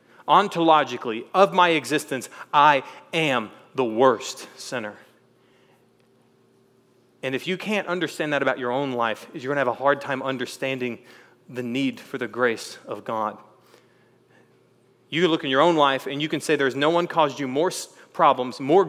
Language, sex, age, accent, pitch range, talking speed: English, male, 30-49, American, 125-165 Hz, 170 wpm